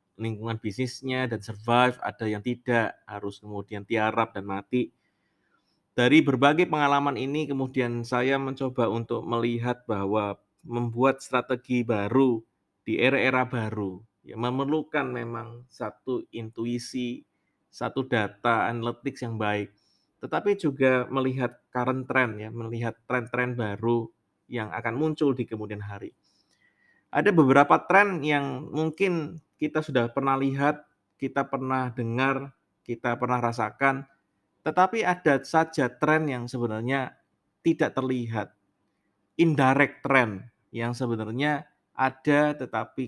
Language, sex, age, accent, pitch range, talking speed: Indonesian, male, 20-39, native, 115-140 Hz, 115 wpm